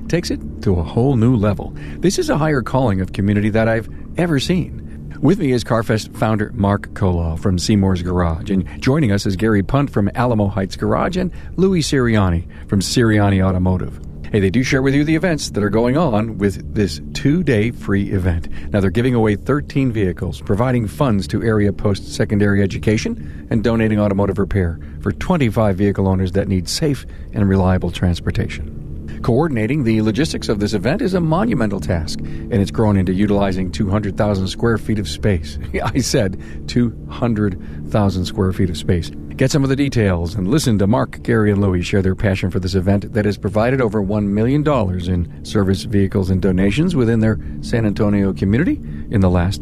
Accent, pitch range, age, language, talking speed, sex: American, 90-115 Hz, 50-69, English, 185 wpm, male